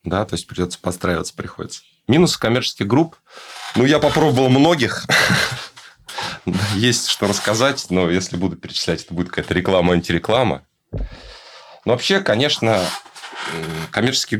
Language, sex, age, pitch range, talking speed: Russian, male, 30-49, 90-115 Hz, 115 wpm